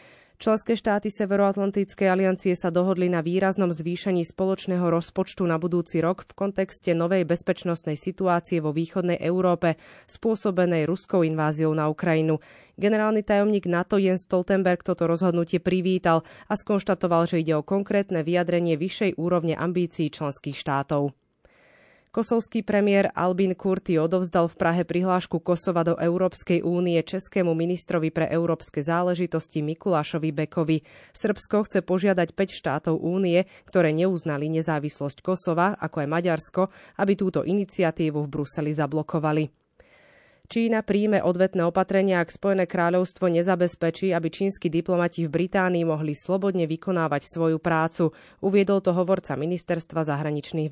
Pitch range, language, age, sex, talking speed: 160-190 Hz, Slovak, 20-39, female, 130 wpm